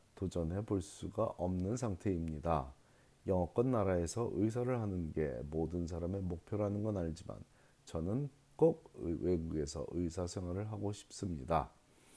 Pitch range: 85-115 Hz